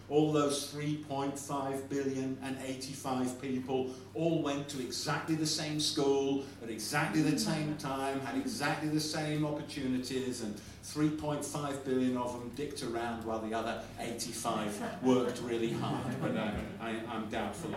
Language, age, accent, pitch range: English, 50-69, British, 125-150 Hz